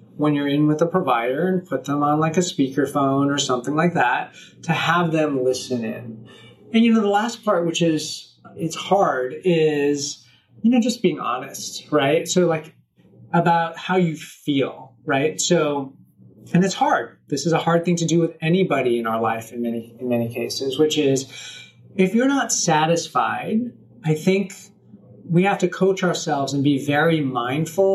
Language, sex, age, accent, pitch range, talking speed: English, male, 30-49, American, 140-180 Hz, 180 wpm